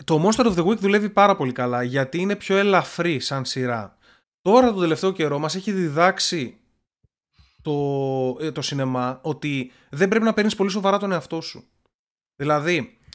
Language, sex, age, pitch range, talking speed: Greek, male, 20-39, 130-185 Hz, 165 wpm